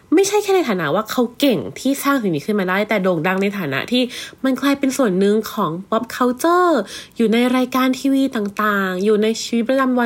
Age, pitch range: 20-39, 200-275 Hz